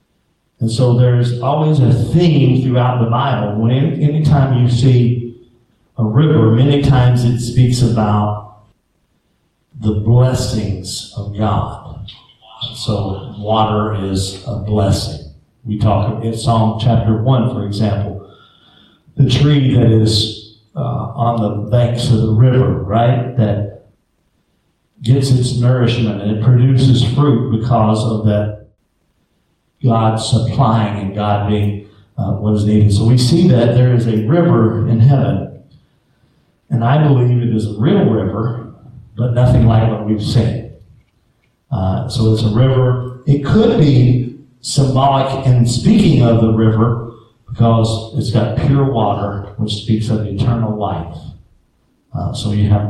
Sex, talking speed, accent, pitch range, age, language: male, 140 wpm, American, 110-125 Hz, 50-69, English